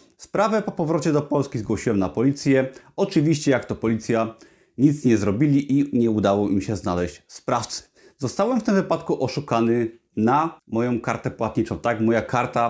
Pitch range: 110-150 Hz